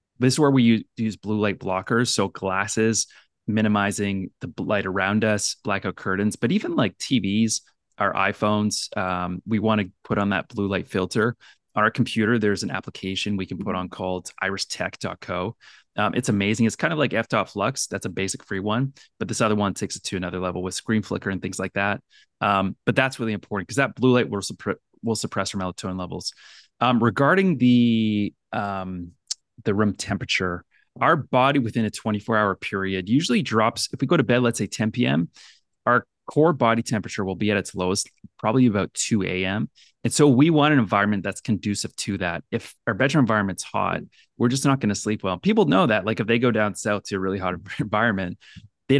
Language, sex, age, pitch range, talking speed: English, male, 20-39, 95-120 Hz, 200 wpm